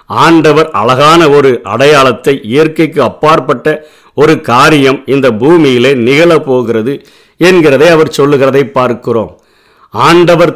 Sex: male